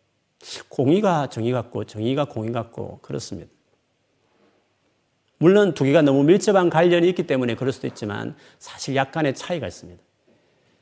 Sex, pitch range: male, 110-155 Hz